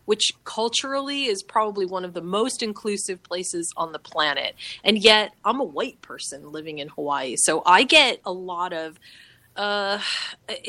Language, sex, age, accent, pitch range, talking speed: English, female, 30-49, American, 185-235 Hz, 165 wpm